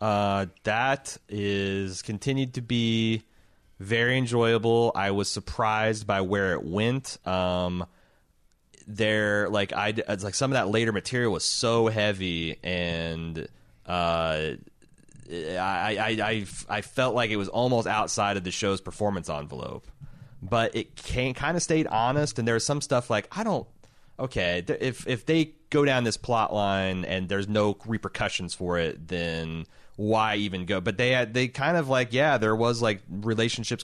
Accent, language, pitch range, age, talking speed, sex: American, English, 95-125 Hz, 30-49, 160 wpm, male